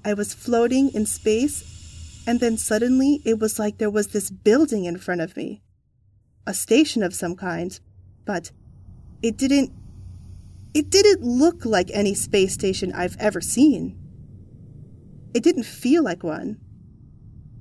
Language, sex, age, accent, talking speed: English, female, 30-49, American, 145 wpm